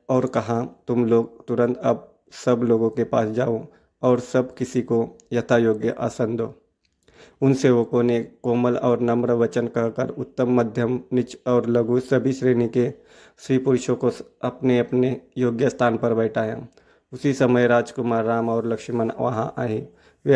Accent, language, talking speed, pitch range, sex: native, Hindi, 155 wpm, 115-125 Hz, male